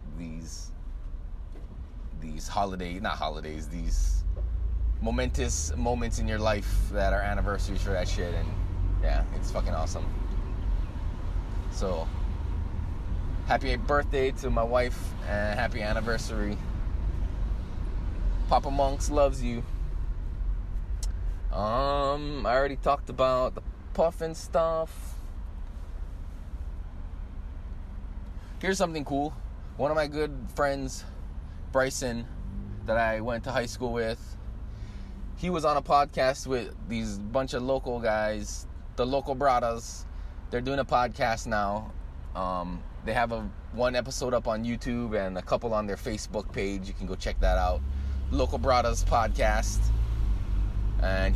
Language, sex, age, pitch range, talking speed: English, male, 20-39, 80-120 Hz, 120 wpm